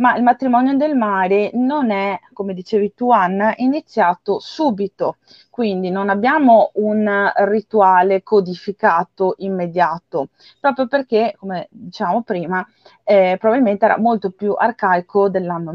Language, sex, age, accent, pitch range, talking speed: Italian, female, 30-49, native, 190-240 Hz, 120 wpm